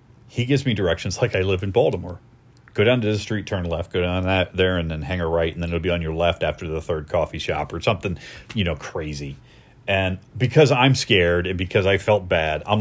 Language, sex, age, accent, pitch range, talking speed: English, male, 30-49, American, 85-120 Hz, 245 wpm